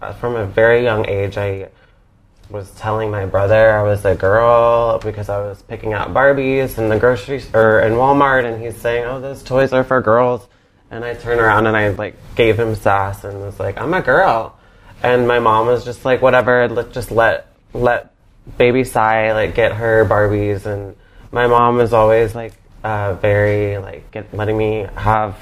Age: 20-39